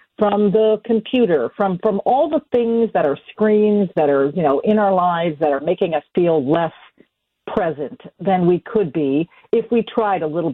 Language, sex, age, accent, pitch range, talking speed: English, female, 50-69, American, 165-230 Hz, 195 wpm